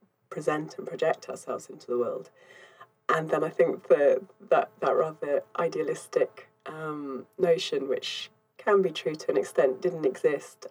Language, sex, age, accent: English, female, 30-49, British